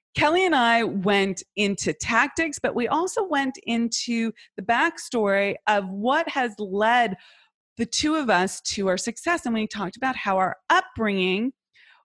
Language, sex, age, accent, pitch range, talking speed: English, female, 30-49, American, 185-245 Hz, 155 wpm